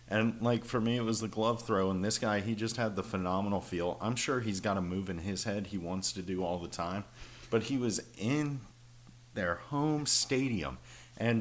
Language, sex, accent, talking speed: English, male, American, 220 wpm